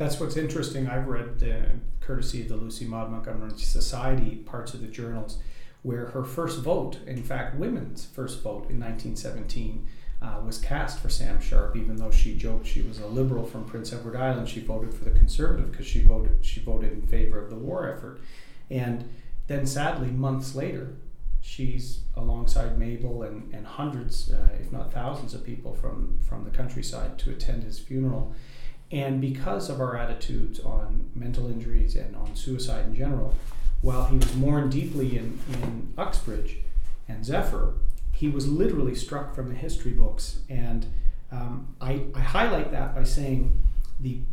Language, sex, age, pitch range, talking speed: English, male, 40-59, 115-135 Hz, 170 wpm